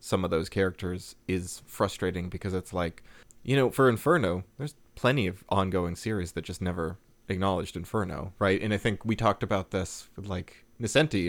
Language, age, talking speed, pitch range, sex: English, 30-49, 175 wpm, 90-110 Hz, male